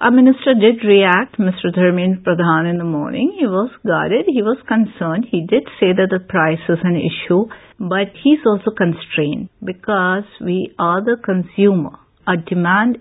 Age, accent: 50-69, Indian